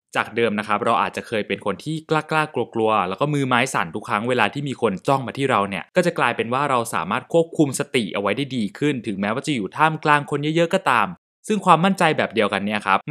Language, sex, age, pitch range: Thai, male, 20-39, 110-155 Hz